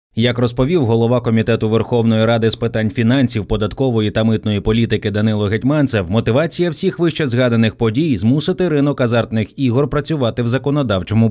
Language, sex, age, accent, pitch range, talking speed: Ukrainian, male, 20-39, native, 105-140 Hz, 145 wpm